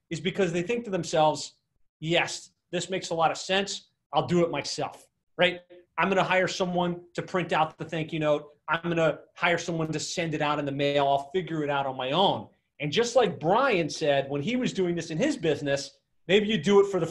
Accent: American